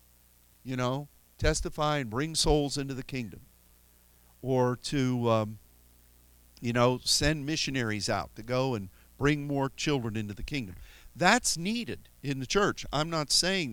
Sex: male